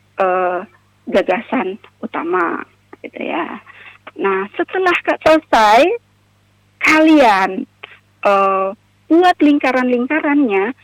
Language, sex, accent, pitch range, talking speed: Indonesian, female, native, 180-270 Hz, 70 wpm